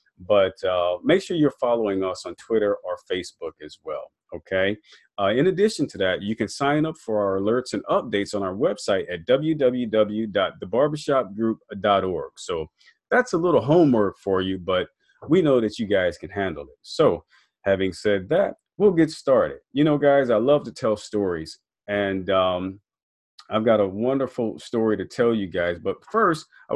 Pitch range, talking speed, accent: 100-150 Hz, 175 wpm, American